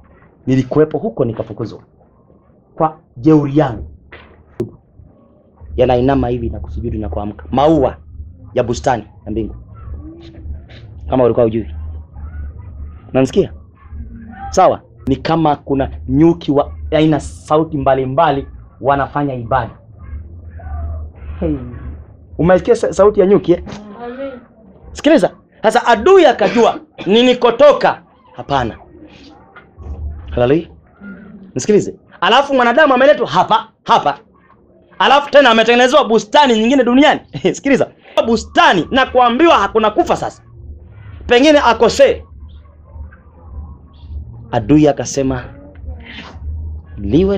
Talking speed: 90 wpm